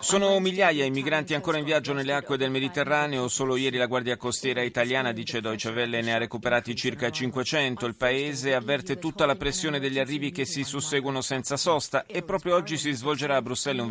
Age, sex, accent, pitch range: 30-49, male, native, 115-140 Hz